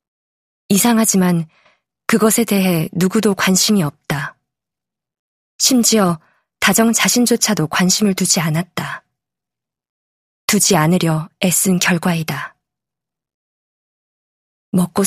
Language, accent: Korean, native